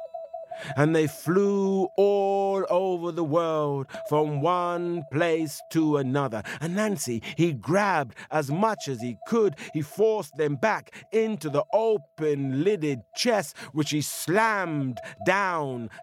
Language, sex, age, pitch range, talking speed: English, male, 50-69, 110-180 Hz, 125 wpm